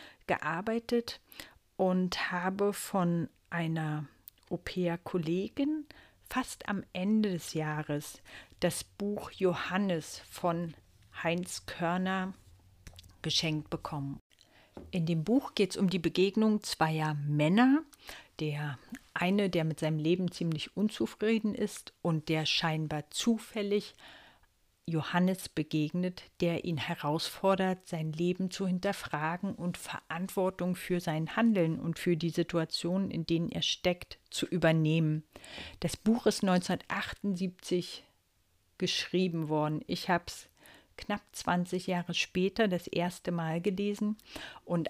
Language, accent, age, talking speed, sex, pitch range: German, German, 50-69, 115 wpm, female, 160-195 Hz